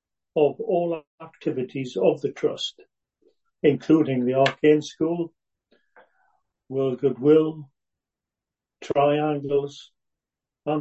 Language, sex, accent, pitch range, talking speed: English, male, British, 140-165 Hz, 80 wpm